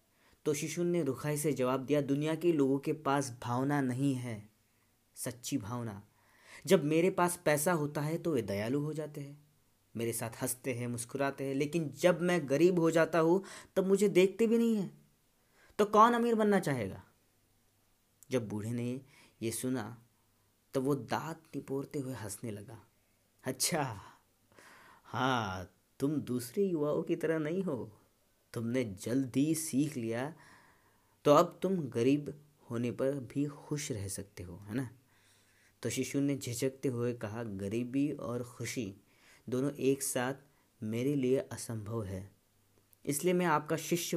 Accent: native